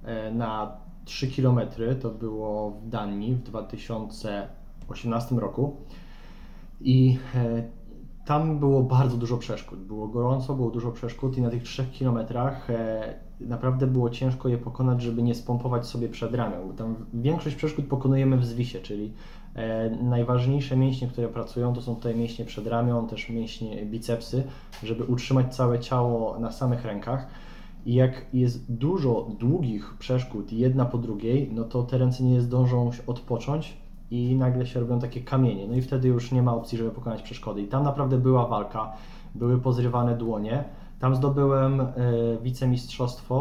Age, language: 20-39, Polish